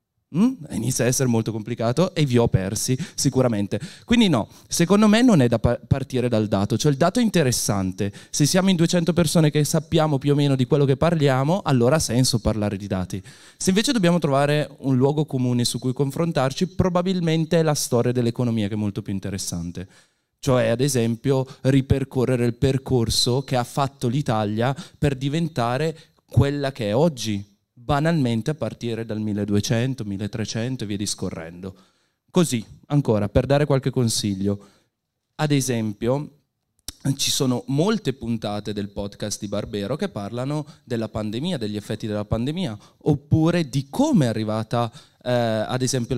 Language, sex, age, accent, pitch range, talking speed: Italian, male, 20-39, native, 110-150 Hz, 160 wpm